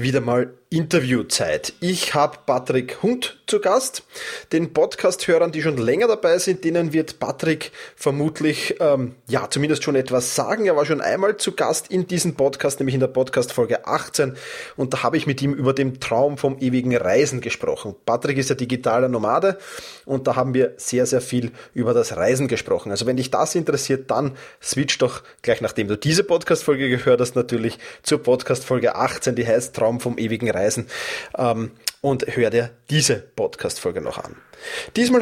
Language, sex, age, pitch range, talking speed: German, male, 20-39, 125-170 Hz, 175 wpm